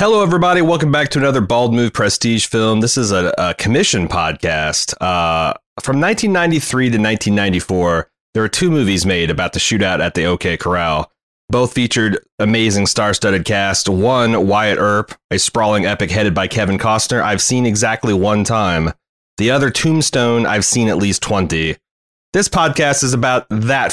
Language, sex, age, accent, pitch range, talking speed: English, male, 30-49, American, 95-125 Hz, 170 wpm